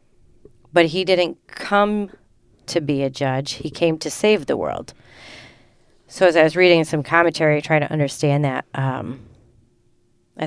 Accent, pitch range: American, 130-165 Hz